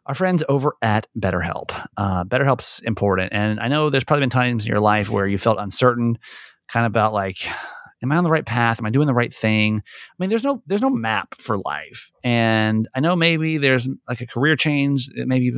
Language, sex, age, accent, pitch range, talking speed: English, male, 30-49, American, 105-135 Hz, 225 wpm